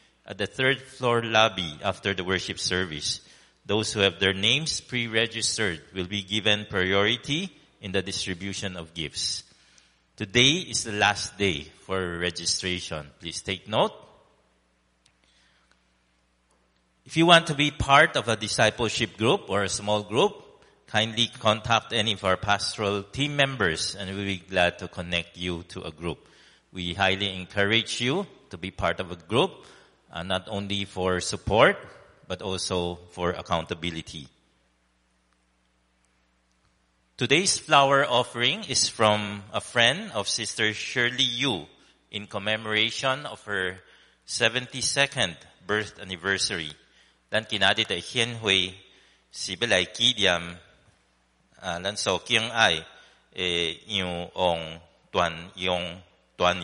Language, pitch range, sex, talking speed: English, 85-110 Hz, male, 115 wpm